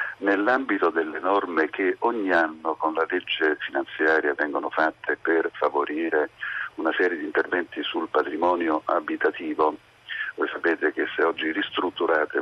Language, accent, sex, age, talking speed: Italian, native, male, 50-69, 130 wpm